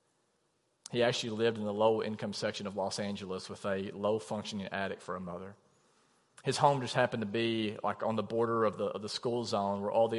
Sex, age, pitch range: male, 40-59, 100-115 Hz